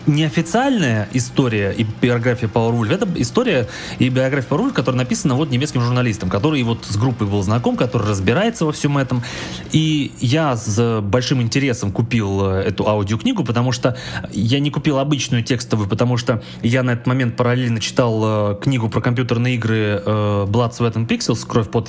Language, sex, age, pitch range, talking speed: Russian, male, 20-39, 105-130 Hz, 160 wpm